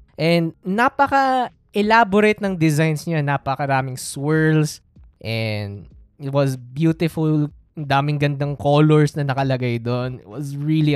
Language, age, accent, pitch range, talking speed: Filipino, 20-39, native, 130-160 Hz, 120 wpm